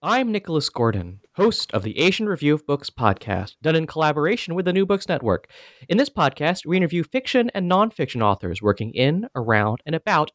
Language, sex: English, male